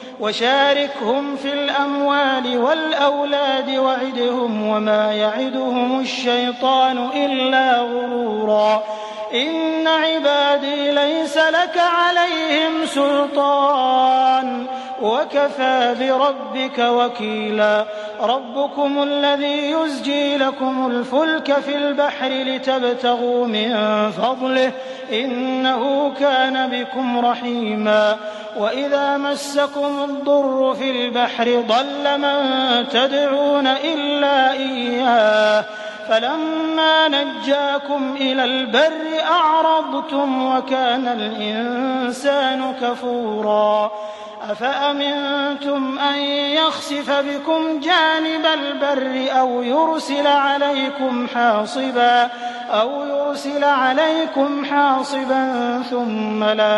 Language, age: English, 30-49